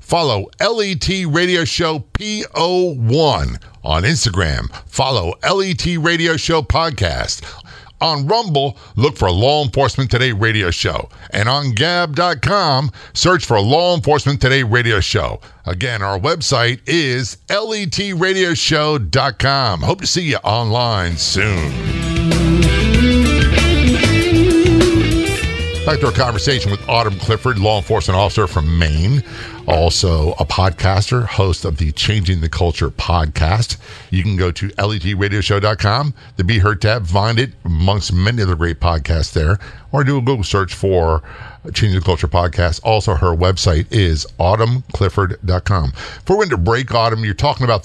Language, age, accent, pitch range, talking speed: English, 50-69, American, 90-130 Hz, 135 wpm